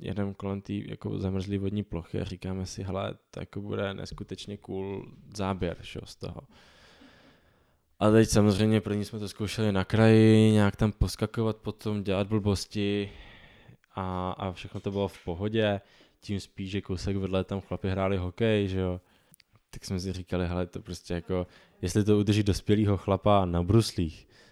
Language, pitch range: Czech, 95-105 Hz